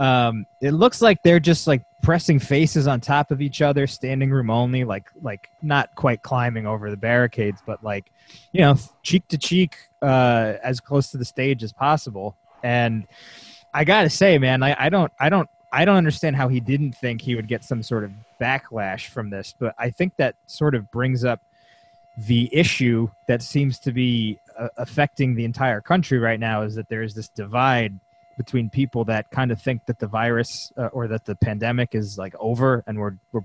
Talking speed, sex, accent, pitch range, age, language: 205 wpm, male, American, 115-145 Hz, 20-39, English